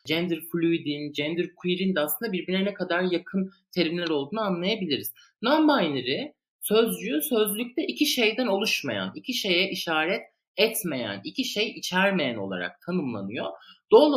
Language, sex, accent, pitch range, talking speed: Turkish, male, native, 155-220 Hz, 125 wpm